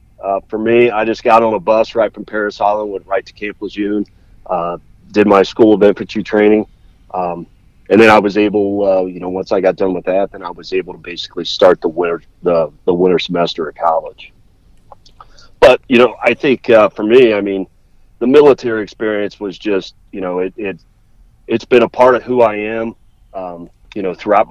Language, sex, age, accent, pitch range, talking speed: English, male, 40-59, American, 90-110 Hz, 210 wpm